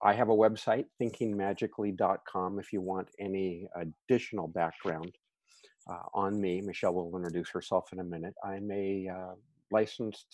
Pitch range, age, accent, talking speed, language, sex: 90-110 Hz, 50-69, American, 145 wpm, English, male